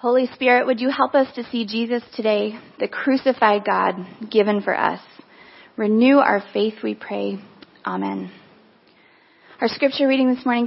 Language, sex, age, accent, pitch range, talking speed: English, female, 20-39, American, 230-300 Hz, 150 wpm